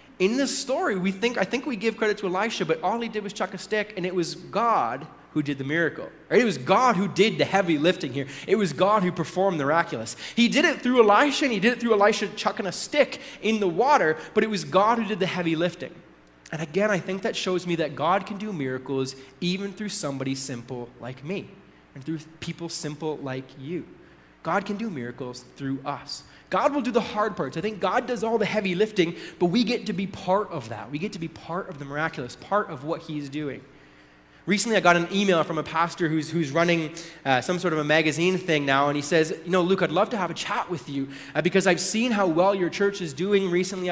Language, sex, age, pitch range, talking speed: English, male, 20-39, 155-210 Hz, 245 wpm